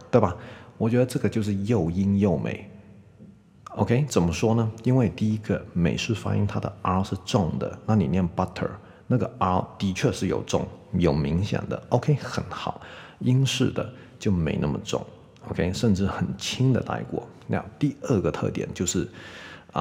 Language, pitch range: Chinese, 90-115 Hz